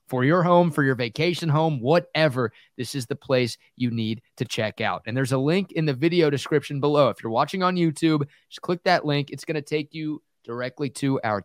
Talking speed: 225 wpm